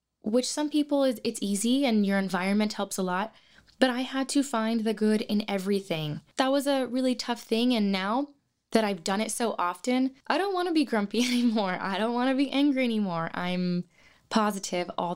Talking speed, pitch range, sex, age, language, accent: 205 wpm, 175-235 Hz, female, 10-29, English, American